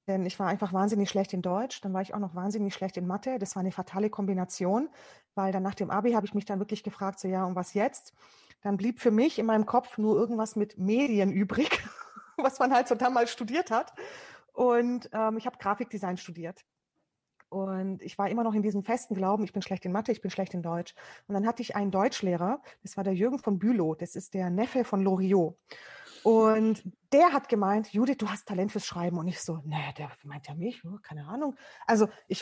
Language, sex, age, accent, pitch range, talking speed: German, female, 30-49, German, 190-235 Hz, 225 wpm